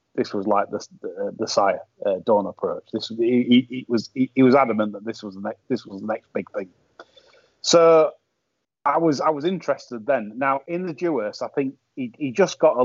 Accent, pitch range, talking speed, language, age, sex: British, 120-175 Hz, 220 wpm, English, 30-49, male